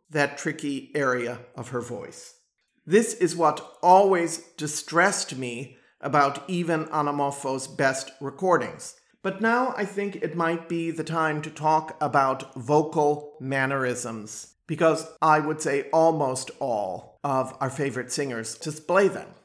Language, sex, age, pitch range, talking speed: English, male, 50-69, 135-165 Hz, 135 wpm